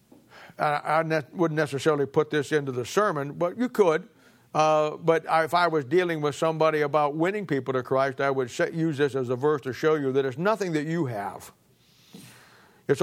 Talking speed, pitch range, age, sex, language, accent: 190 wpm, 135-170 Hz, 60-79, male, English, American